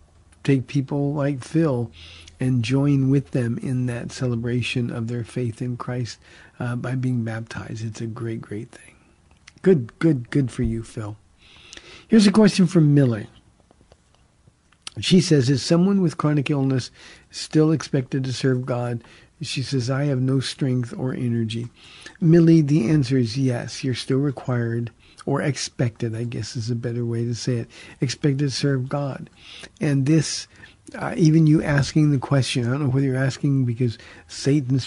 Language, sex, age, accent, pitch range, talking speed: English, male, 50-69, American, 120-145 Hz, 165 wpm